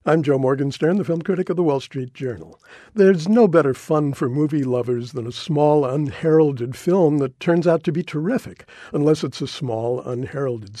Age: 50-69